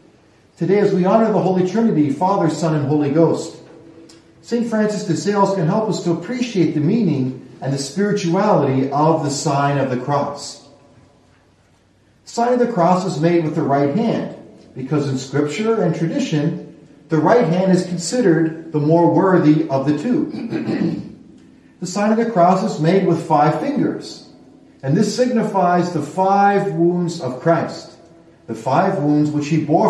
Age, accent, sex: 40-59, American, male